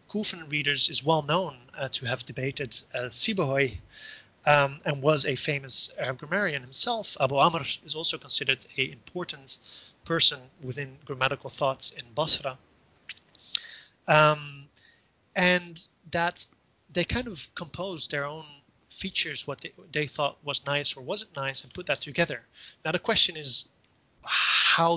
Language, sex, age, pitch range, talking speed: English, male, 30-49, 135-155 Hz, 140 wpm